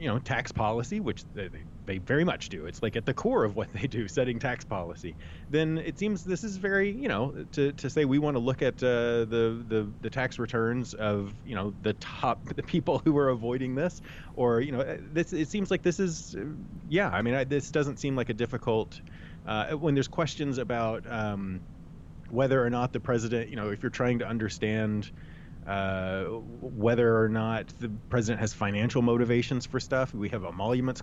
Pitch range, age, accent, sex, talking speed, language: 105-135 Hz, 30-49, American, male, 205 wpm, English